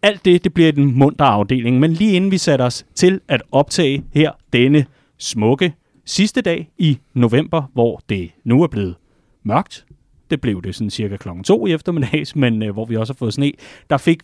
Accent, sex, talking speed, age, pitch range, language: native, male, 200 wpm, 30-49, 110-145 Hz, Danish